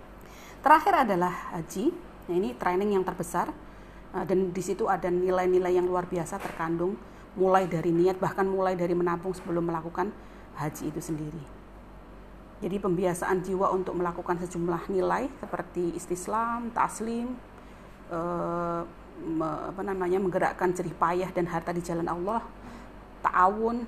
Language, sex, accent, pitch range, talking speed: Indonesian, female, native, 175-200 Hz, 125 wpm